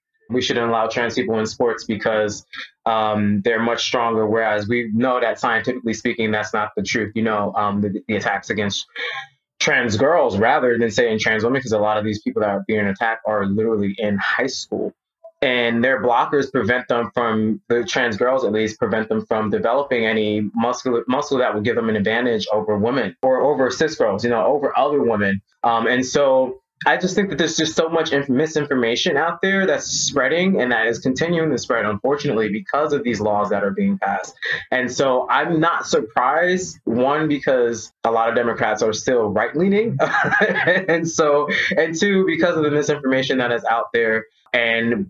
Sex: male